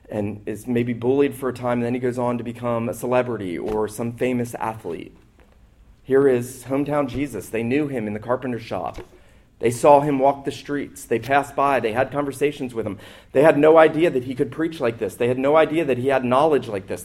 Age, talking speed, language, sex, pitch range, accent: 40-59, 230 wpm, English, male, 120-155 Hz, American